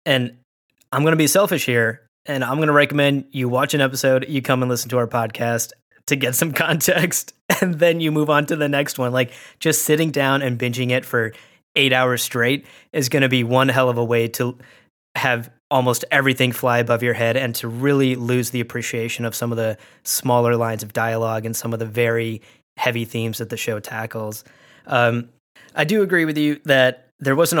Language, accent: English, American